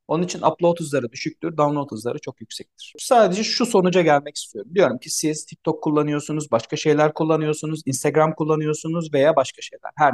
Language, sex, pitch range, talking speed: Turkish, male, 150-210 Hz, 165 wpm